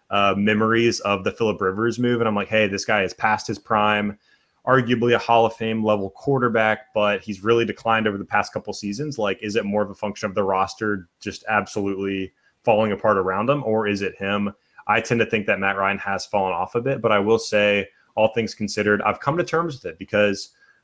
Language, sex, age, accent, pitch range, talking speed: English, male, 20-39, American, 100-115 Hz, 225 wpm